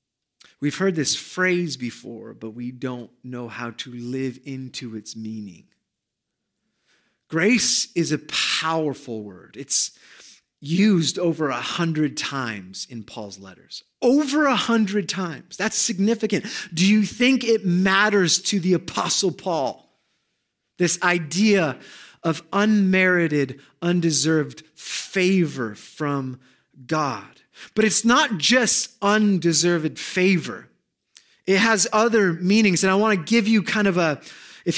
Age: 30-49